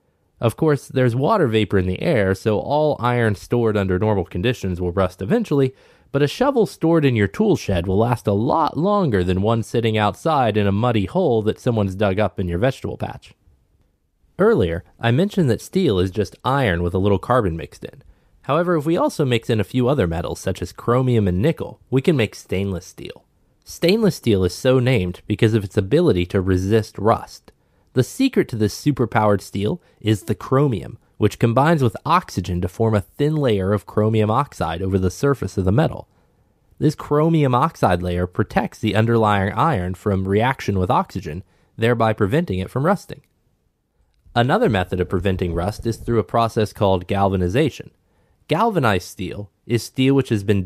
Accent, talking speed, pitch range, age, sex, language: American, 185 wpm, 95-130 Hz, 20-39, male, English